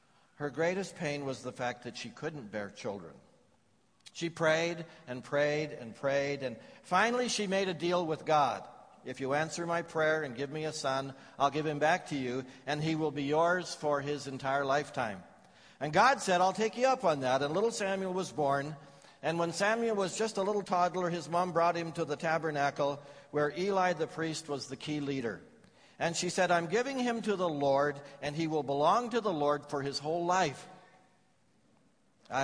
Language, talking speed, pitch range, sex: English, 200 wpm, 135-180 Hz, male